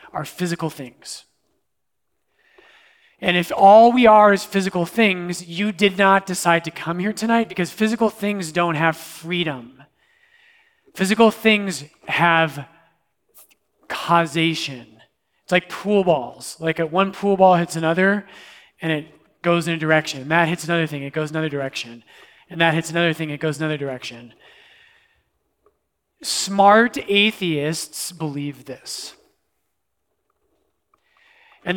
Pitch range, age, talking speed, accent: 155-200 Hz, 30-49, 130 wpm, American